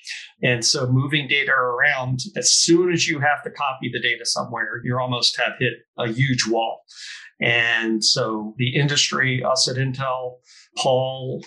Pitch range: 120-140 Hz